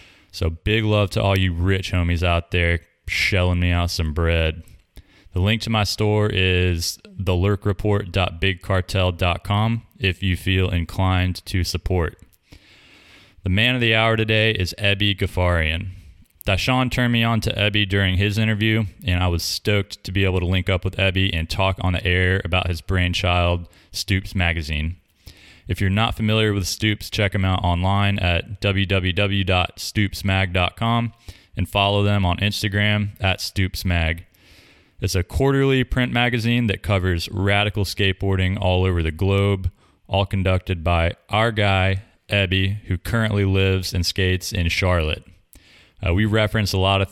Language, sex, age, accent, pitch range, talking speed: English, male, 20-39, American, 90-100 Hz, 155 wpm